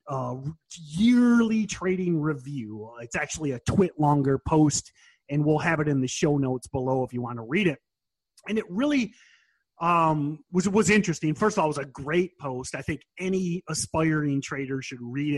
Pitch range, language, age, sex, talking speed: 135-170 Hz, English, 30-49, male, 185 wpm